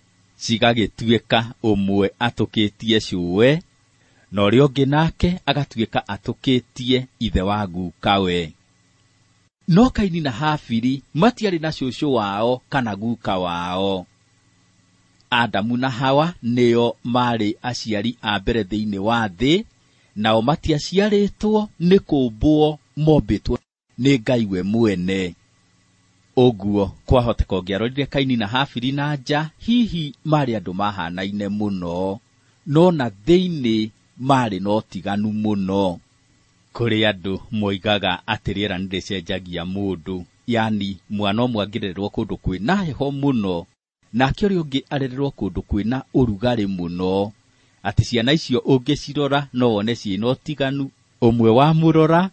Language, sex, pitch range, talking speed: English, male, 100-135 Hz, 105 wpm